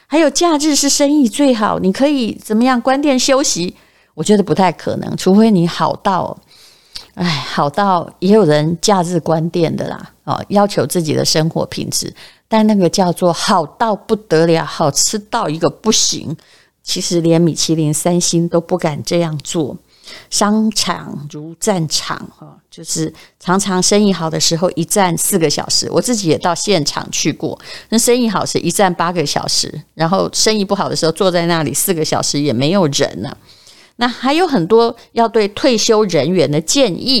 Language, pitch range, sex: Chinese, 165-220 Hz, female